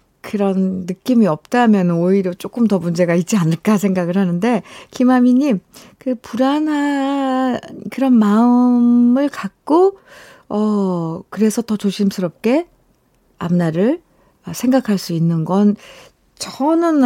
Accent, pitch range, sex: native, 180-235 Hz, female